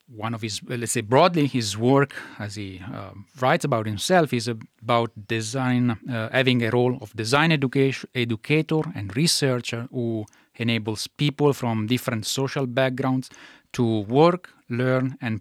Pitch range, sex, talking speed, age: 110-140 Hz, male, 150 wpm, 30-49